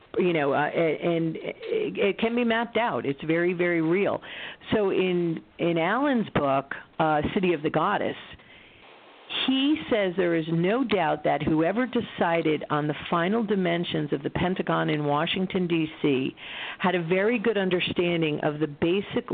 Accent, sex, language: American, female, English